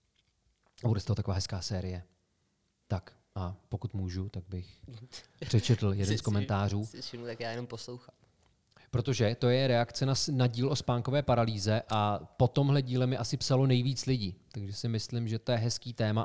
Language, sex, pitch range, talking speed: Czech, male, 105-130 Hz, 170 wpm